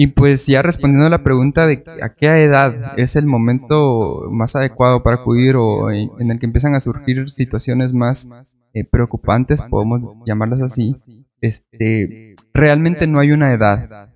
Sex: male